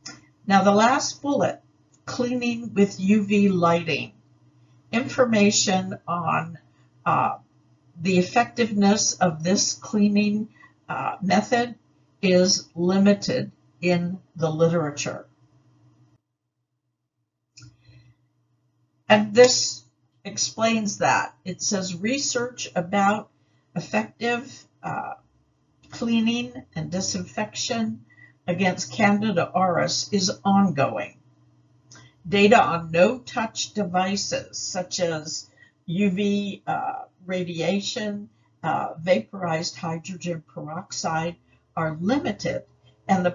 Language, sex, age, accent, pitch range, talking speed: English, female, 60-79, American, 150-205 Hz, 80 wpm